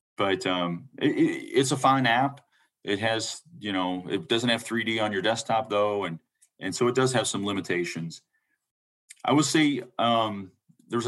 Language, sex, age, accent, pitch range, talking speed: English, male, 40-59, American, 100-130 Hz, 175 wpm